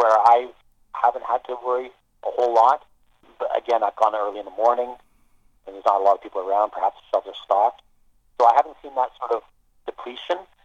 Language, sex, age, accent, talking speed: English, male, 40-59, American, 210 wpm